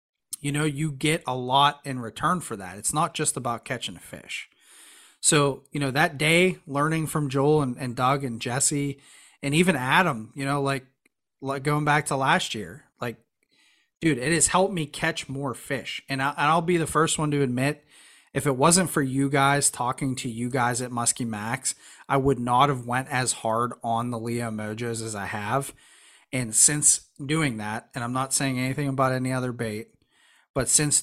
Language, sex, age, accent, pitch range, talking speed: English, male, 30-49, American, 120-145 Hz, 200 wpm